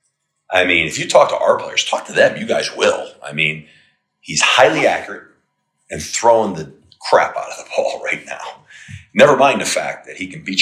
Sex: male